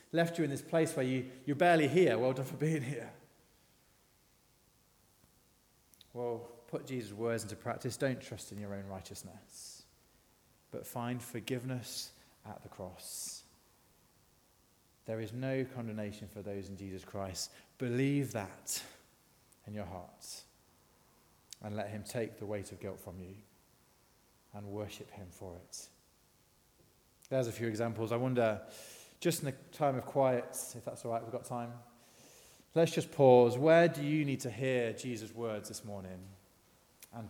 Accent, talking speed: British, 150 wpm